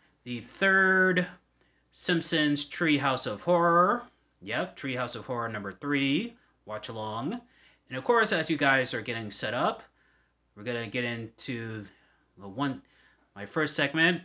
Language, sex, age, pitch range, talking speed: English, male, 30-49, 110-150 Hz, 145 wpm